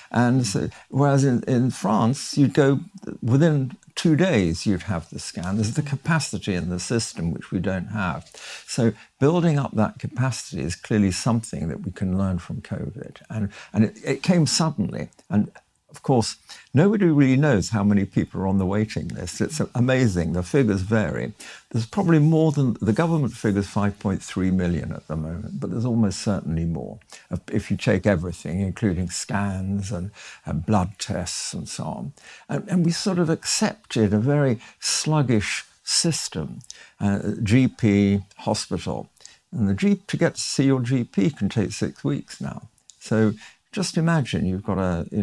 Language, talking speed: English, 170 wpm